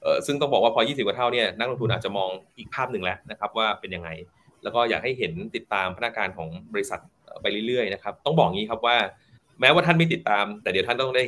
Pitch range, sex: 105-140 Hz, male